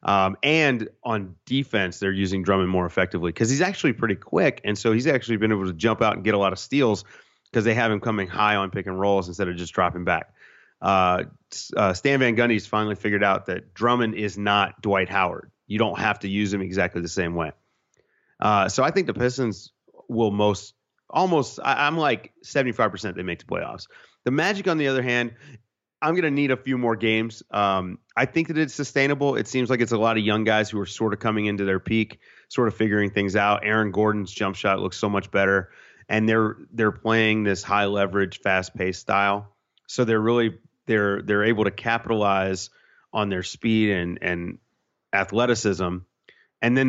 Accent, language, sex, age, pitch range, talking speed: American, English, male, 30-49, 95-115 Hz, 205 wpm